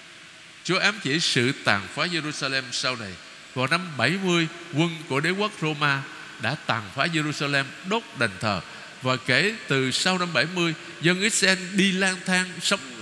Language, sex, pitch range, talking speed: Vietnamese, male, 140-190 Hz, 165 wpm